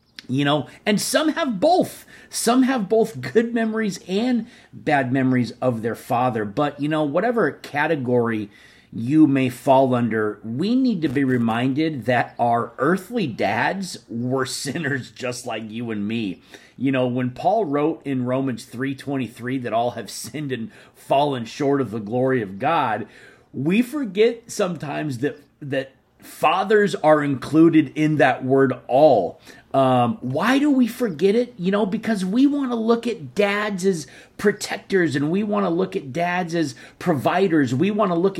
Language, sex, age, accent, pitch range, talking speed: English, male, 40-59, American, 130-200 Hz, 165 wpm